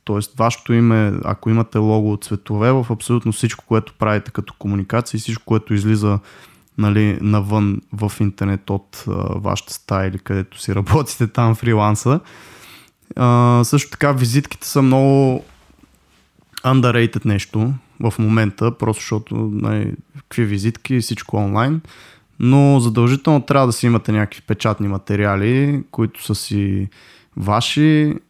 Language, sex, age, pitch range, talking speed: Bulgarian, male, 20-39, 105-125 Hz, 135 wpm